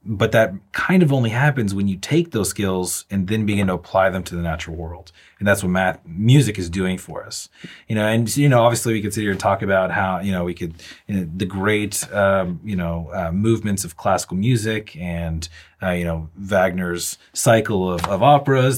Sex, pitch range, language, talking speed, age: male, 85-105 Hz, English, 220 wpm, 30-49